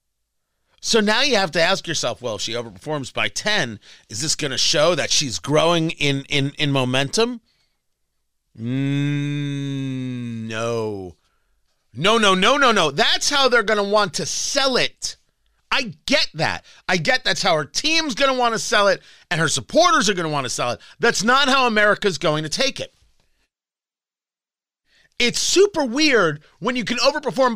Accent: American